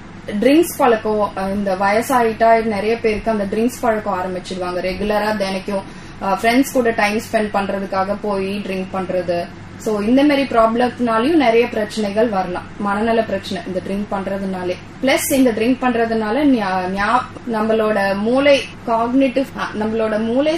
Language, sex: English, female